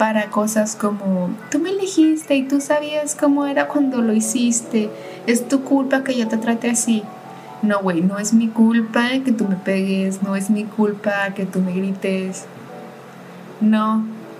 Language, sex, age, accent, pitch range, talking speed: Spanish, female, 20-39, Mexican, 200-240 Hz, 170 wpm